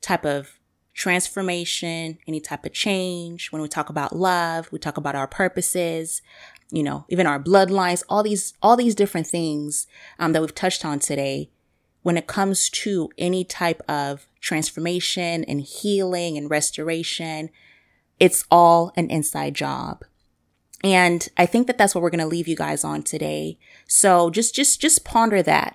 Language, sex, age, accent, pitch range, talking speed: English, female, 20-39, American, 155-195 Hz, 165 wpm